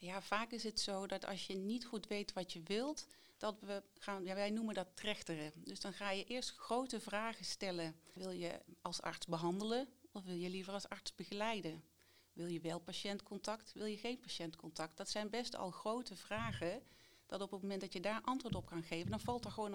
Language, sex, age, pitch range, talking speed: Dutch, female, 40-59, 175-210 Hz, 205 wpm